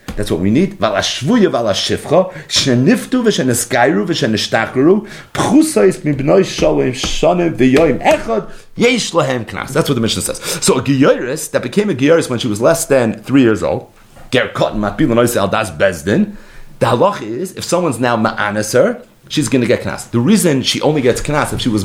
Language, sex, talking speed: English, male, 120 wpm